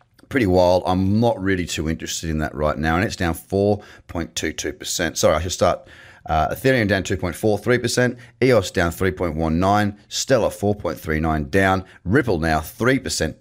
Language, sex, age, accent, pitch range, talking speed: English, male, 30-49, Australian, 80-105 Hz, 145 wpm